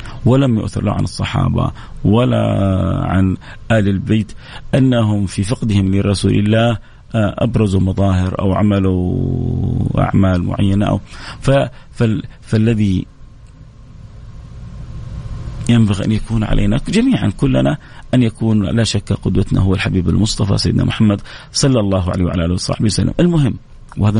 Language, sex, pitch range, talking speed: English, male, 100-125 Hz, 115 wpm